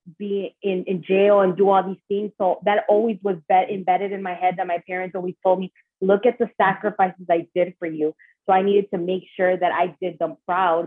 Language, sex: English, female